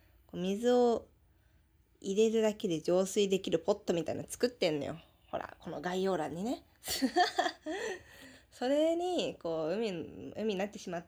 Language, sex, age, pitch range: Japanese, female, 20-39, 165-245 Hz